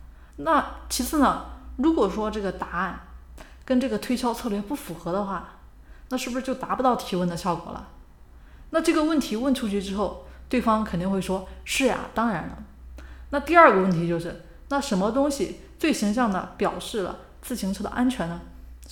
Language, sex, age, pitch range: Chinese, female, 30-49, 180-250 Hz